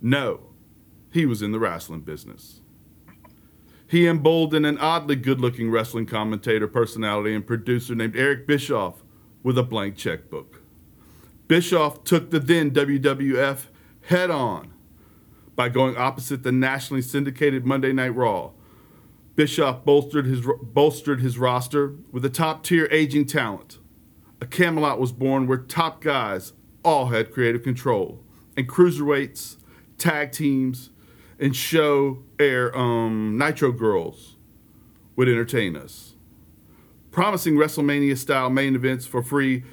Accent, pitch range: American, 120-150 Hz